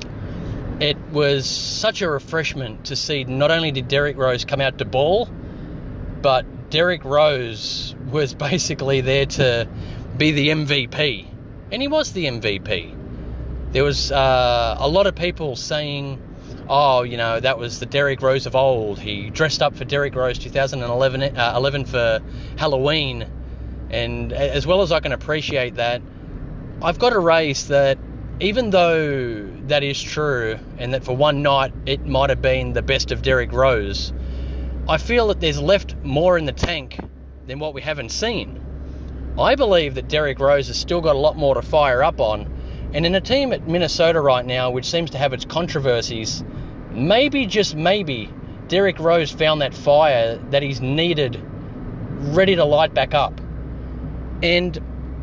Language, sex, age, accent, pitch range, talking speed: English, male, 30-49, Australian, 120-155 Hz, 165 wpm